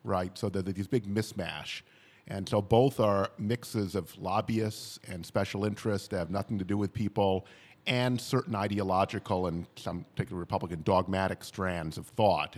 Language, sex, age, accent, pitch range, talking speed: English, male, 40-59, American, 90-110 Hz, 160 wpm